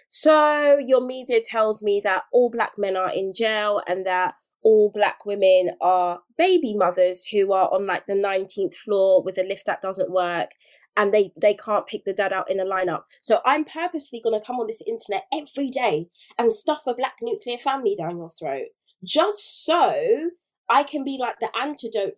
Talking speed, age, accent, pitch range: 195 wpm, 20-39, British, 205-315 Hz